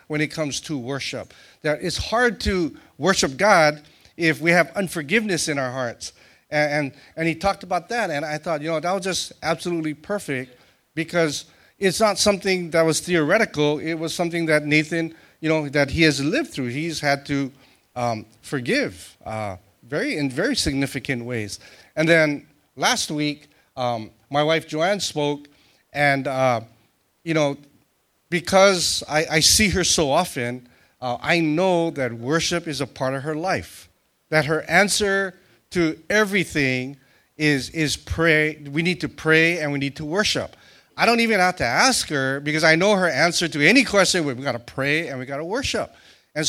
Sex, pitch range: male, 140-175 Hz